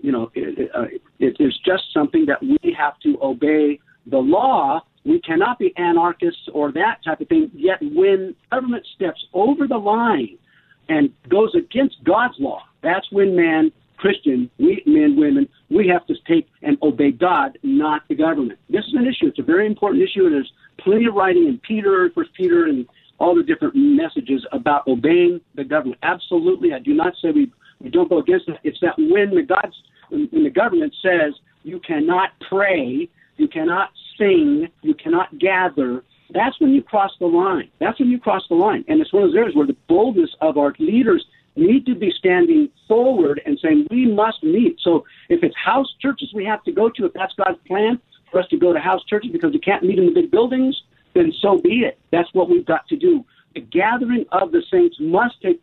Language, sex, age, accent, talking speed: English, male, 50-69, American, 205 wpm